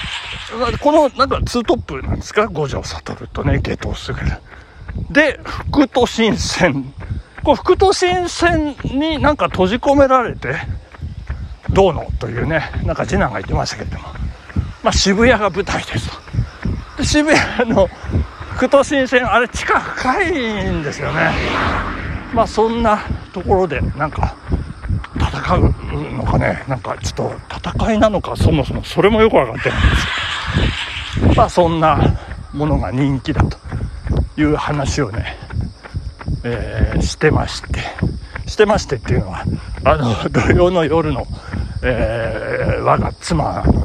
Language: Japanese